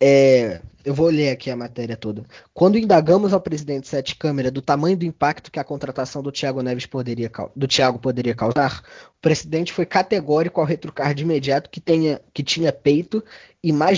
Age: 20-39